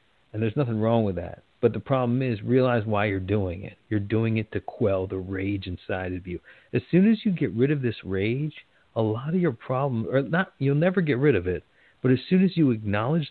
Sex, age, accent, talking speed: male, 50-69, American, 240 wpm